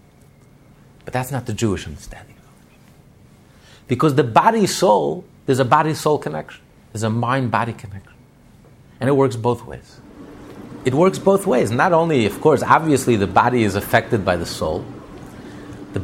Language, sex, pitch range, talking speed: English, male, 100-140 Hz, 155 wpm